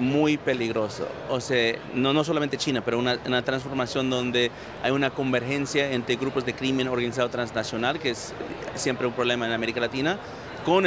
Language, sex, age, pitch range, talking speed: Spanish, male, 40-59, 120-135 Hz, 170 wpm